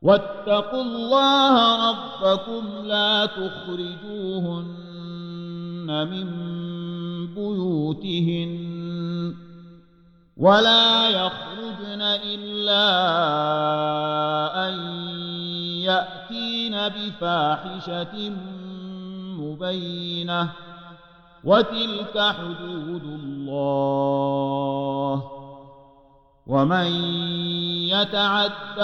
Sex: male